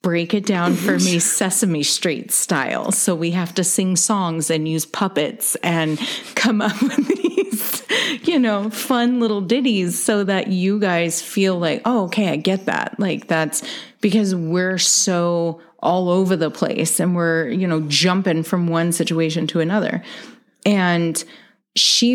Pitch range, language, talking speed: 165-210 Hz, English, 160 wpm